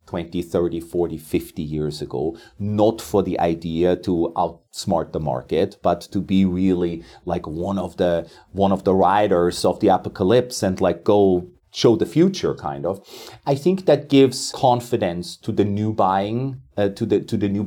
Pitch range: 95-135 Hz